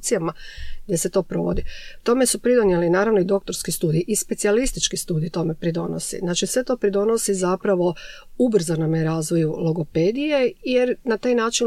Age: 40-59